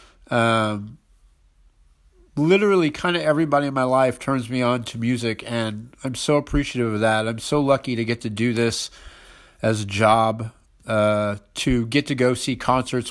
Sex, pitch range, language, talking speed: male, 115-140 Hz, English, 170 wpm